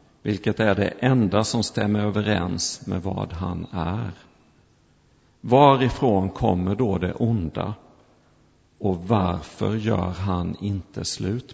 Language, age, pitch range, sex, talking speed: Swedish, 50-69, 90-115 Hz, male, 115 wpm